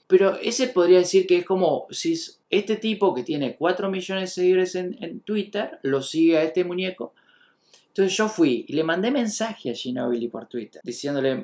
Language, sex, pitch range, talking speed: Spanish, male, 140-195 Hz, 195 wpm